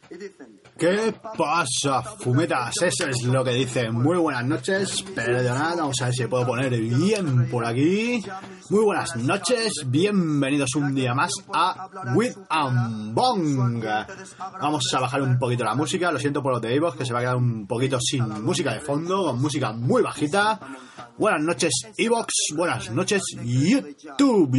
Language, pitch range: Spanish, 130-185 Hz